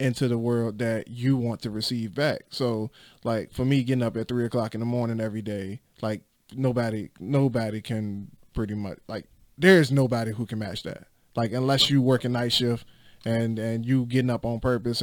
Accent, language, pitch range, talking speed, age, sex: American, English, 115-130 Hz, 200 wpm, 20-39, male